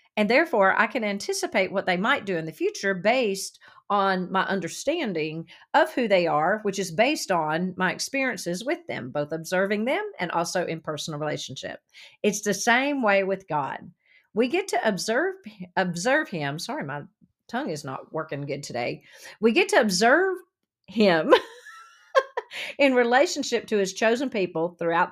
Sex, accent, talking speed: female, American, 160 wpm